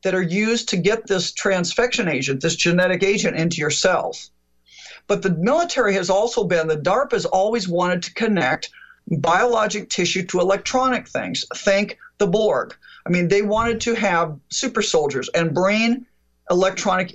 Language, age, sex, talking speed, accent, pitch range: English, 50-69, male, 160 wpm, American, 170-235 Hz